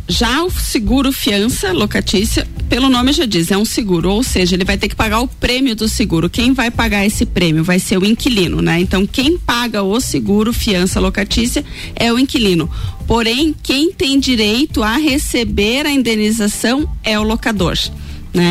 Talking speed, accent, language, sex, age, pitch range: 180 wpm, Brazilian, Portuguese, female, 30-49, 200-250 Hz